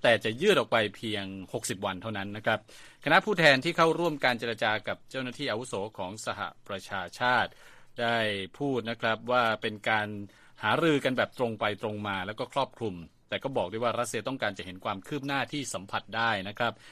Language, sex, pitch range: Thai, male, 100-125 Hz